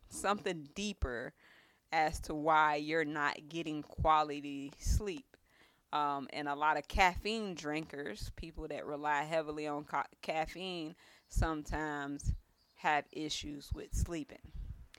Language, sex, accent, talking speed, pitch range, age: English, female, American, 110 wpm, 155-205 Hz, 20-39